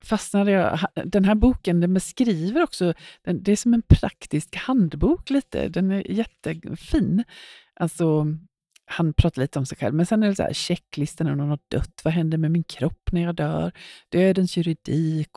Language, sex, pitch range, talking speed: Swedish, female, 155-185 Hz, 175 wpm